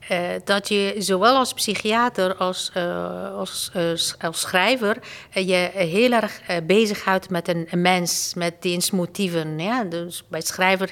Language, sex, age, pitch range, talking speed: Dutch, female, 50-69, 170-205 Hz, 145 wpm